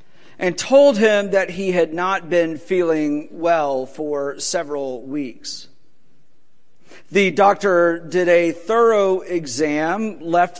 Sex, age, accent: male, 50-69, American